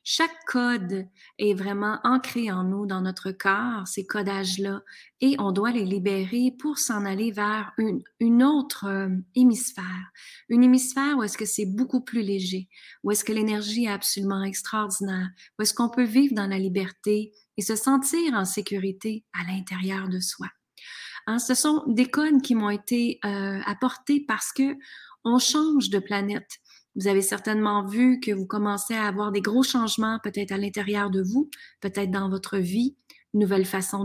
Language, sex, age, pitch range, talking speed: French, female, 30-49, 195-245 Hz, 175 wpm